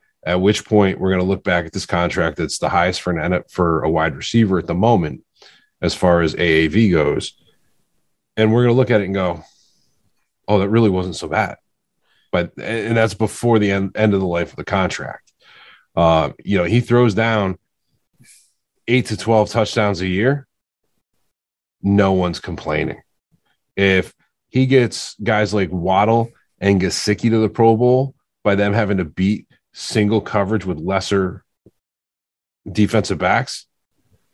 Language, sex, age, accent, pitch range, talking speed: English, male, 30-49, American, 95-110 Hz, 170 wpm